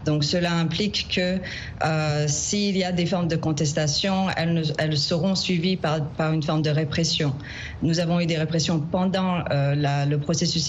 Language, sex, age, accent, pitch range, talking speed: French, female, 40-59, French, 160-195 Hz, 175 wpm